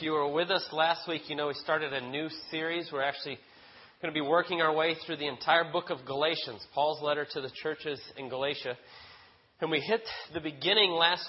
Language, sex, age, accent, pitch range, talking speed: English, male, 30-49, American, 145-170 Hz, 220 wpm